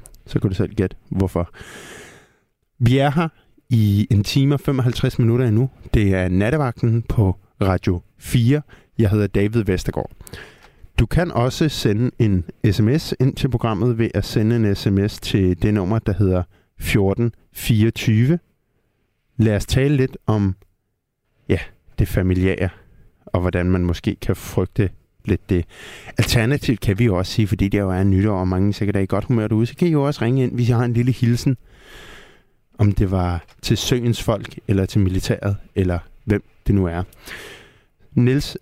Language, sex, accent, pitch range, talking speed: Danish, male, native, 100-125 Hz, 165 wpm